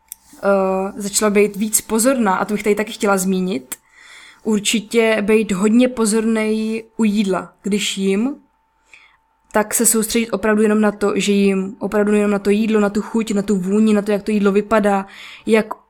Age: 20-39